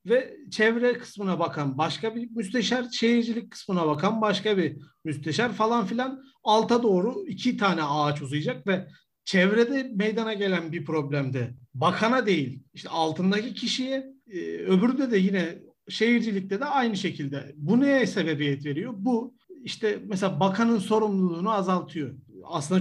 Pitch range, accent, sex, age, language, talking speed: 155-220 Hz, native, male, 50-69, Turkish, 130 wpm